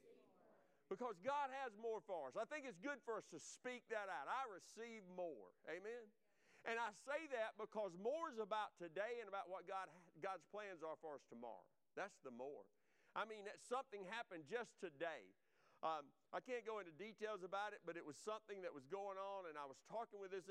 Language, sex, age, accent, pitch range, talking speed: English, male, 50-69, American, 190-270 Hz, 205 wpm